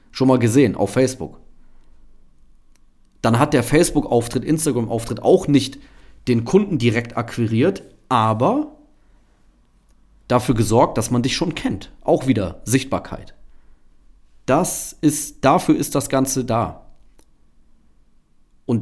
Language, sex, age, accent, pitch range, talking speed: German, male, 40-59, German, 105-140 Hz, 110 wpm